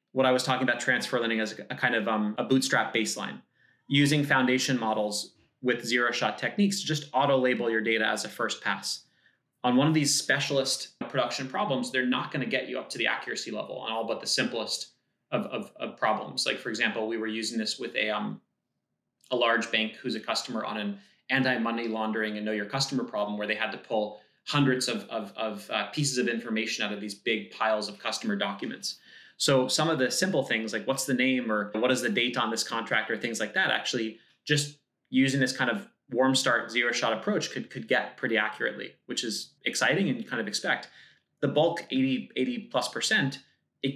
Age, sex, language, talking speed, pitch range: 30-49, male, English, 215 wpm, 115-145 Hz